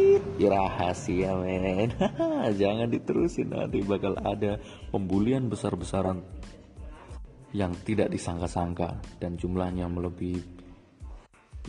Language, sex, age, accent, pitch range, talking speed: Indonesian, male, 20-39, native, 95-110 Hz, 75 wpm